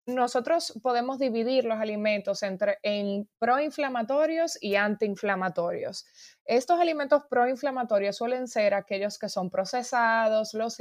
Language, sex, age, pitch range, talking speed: Spanish, female, 20-39, 195-255 Hz, 110 wpm